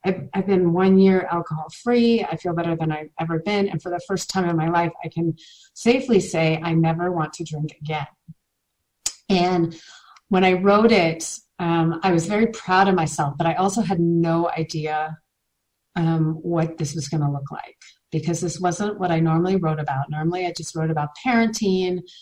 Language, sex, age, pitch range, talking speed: English, female, 30-49, 160-185 Hz, 190 wpm